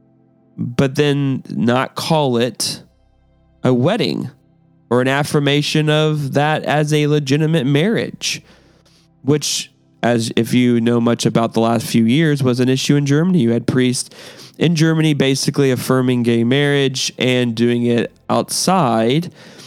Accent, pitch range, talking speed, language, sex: American, 125-160 Hz, 135 wpm, English, male